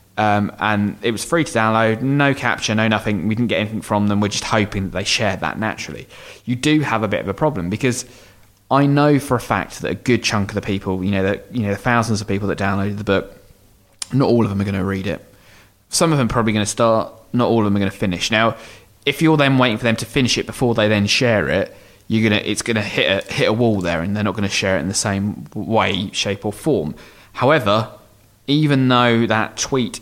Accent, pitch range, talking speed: British, 100-115 Hz, 260 wpm